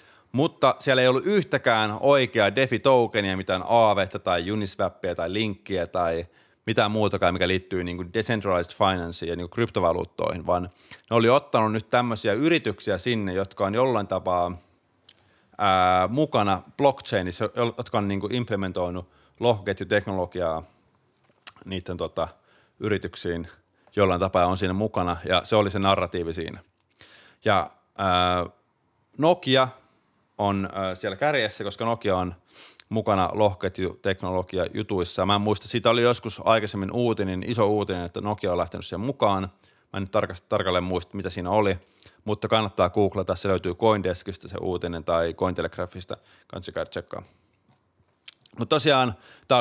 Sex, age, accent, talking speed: male, 30-49, native, 135 wpm